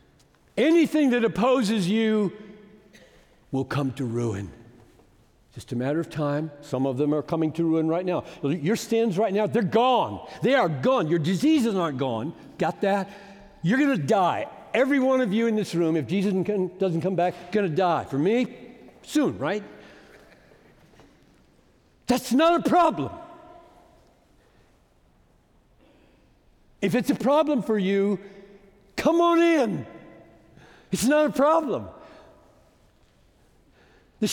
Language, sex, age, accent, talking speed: English, male, 60-79, American, 135 wpm